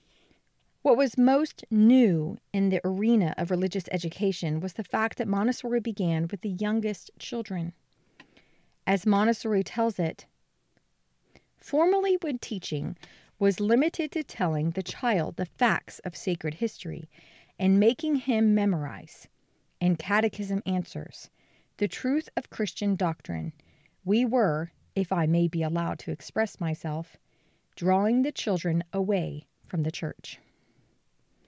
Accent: American